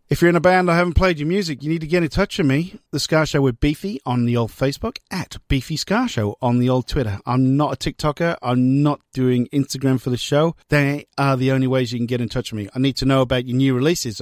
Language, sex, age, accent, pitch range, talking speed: English, male, 40-59, British, 120-175 Hz, 280 wpm